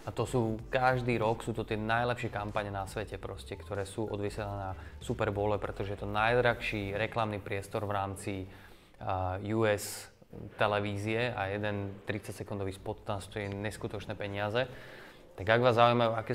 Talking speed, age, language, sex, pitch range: 155 wpm, 20-39, Slovak, male, 100-115 Hz